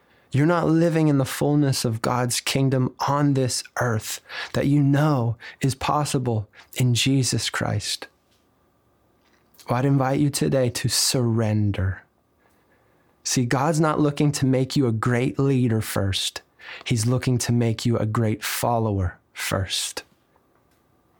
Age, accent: 20-39, American